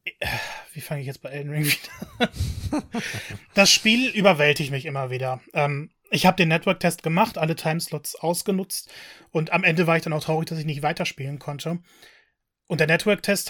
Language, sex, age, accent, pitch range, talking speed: German, male, 30-49, German, 150-180 Hz, 175 wpm